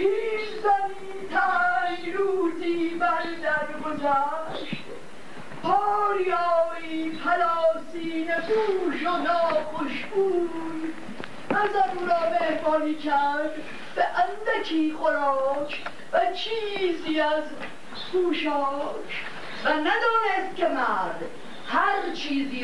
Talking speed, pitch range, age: 75 wpm, 285-370 Hz, 50-69